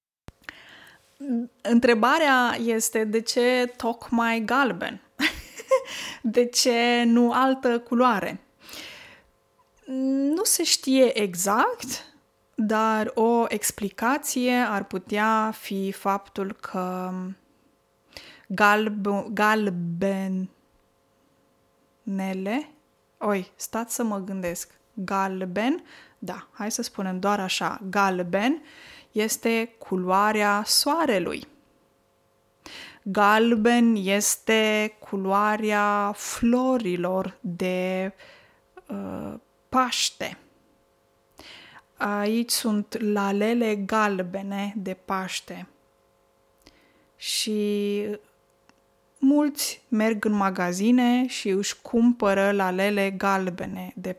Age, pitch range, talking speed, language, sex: 20-39, 195-245 Hz, 70 wpm, Romanian, female